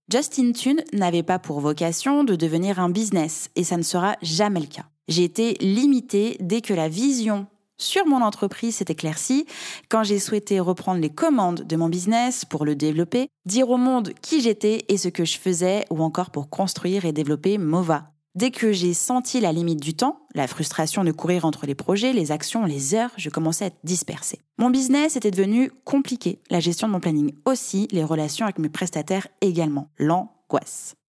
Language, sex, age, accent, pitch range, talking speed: French, female, 20-39, French, 160-220 Hz, 195 wpm